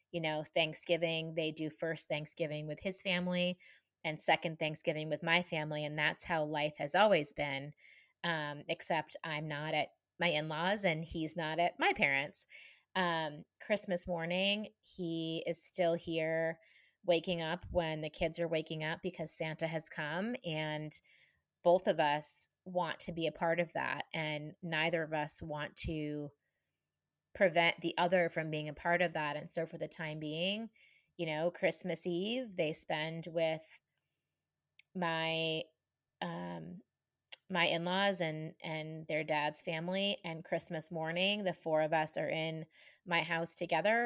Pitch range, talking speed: 155-180 Hz, 155 wpm